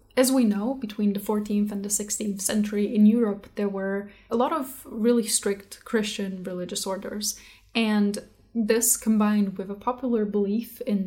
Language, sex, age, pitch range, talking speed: English, female, 10-29, 200-235 Hz, 165 wpm